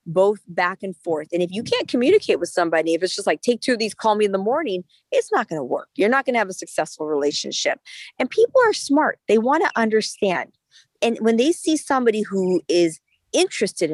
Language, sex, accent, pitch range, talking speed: English, female, American, 175-240 Hz, 230 wpm